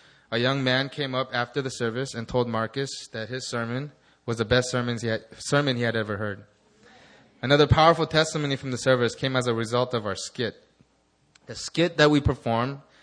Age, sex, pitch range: 20-39, male, 110-130 Hz